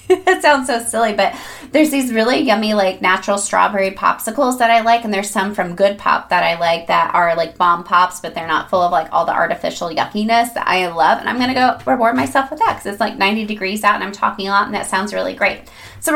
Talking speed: 255 wpm